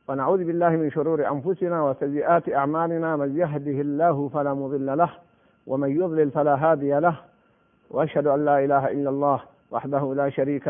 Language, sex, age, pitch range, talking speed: Arabic, male, 50-69, 140-175 Hz, 150 wpm